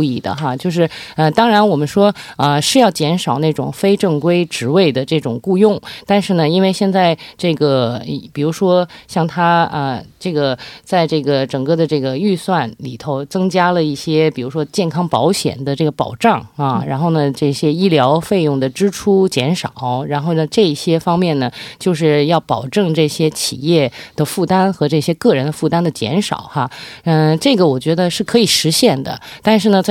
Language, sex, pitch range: Korean, female, 145-180 Hz